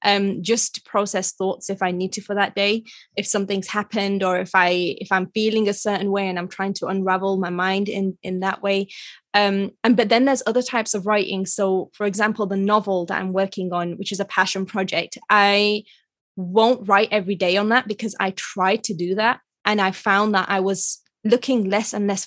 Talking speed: 220 wpm